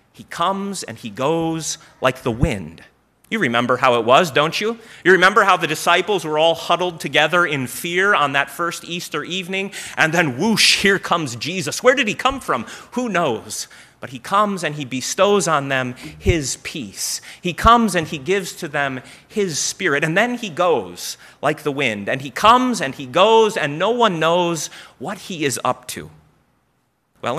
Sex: male